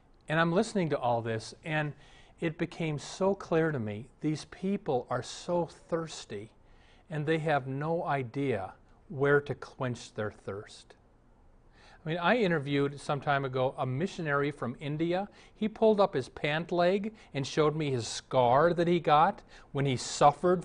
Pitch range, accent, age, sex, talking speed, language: 130-175 Hz, American, 40-59, male, 165 wpm, English